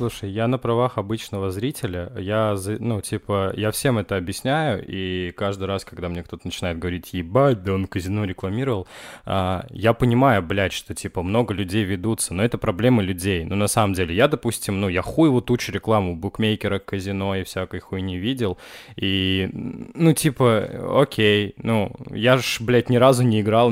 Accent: native